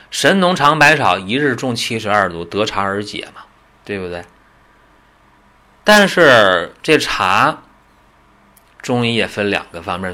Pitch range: 95-130 Hz